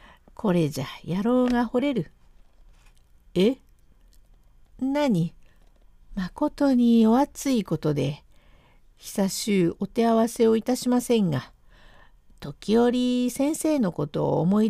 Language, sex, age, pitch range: Japanese, female, 50-69, 155-235 Hz